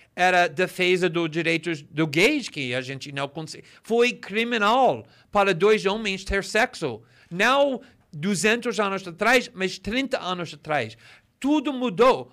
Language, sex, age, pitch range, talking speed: Portuguese, male, 50-69, 160-215 Hz, 150 wpm